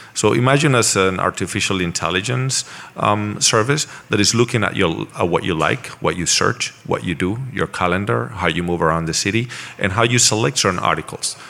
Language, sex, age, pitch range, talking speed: English, male, 40-59, 85-110 Hz, 190 wpm